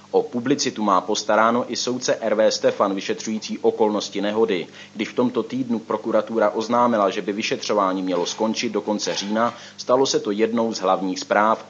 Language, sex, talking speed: Czech, male, 165 wpm